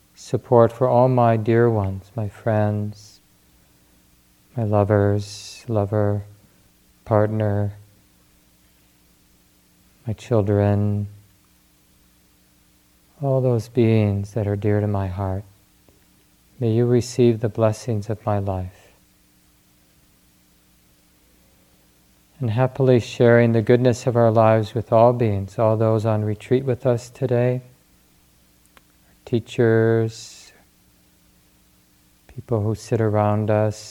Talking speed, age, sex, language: 95 wpm, 40-59, male, English